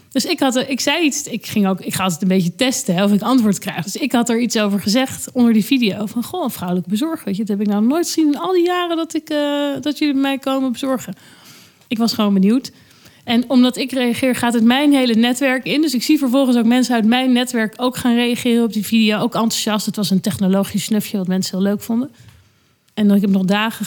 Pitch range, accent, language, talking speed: 210-275 Hz, Dutch, Dutch, 250 wpm